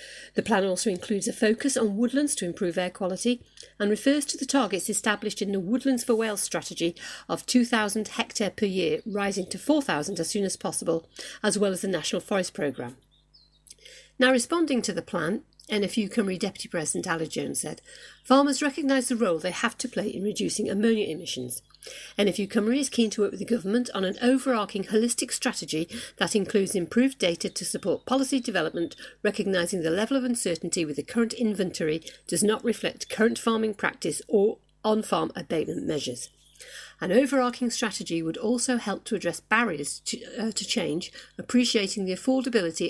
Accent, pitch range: British, 185-240 Hz